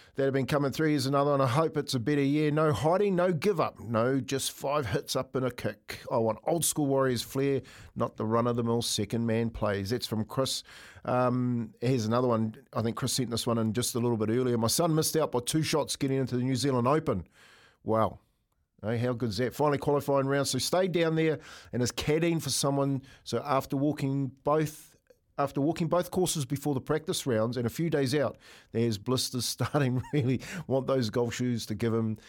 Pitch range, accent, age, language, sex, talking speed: 115-140 Hz, Australian, 50-69, English, male, 220 wpm